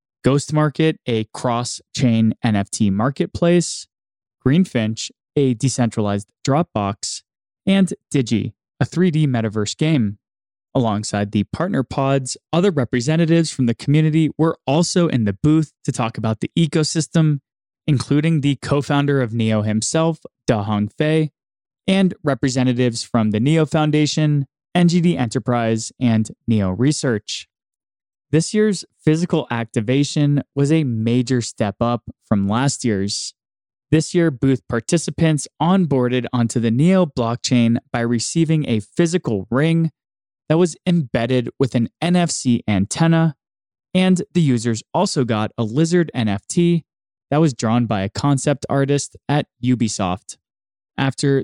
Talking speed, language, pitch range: 125 wpm, English, 115-160 Hz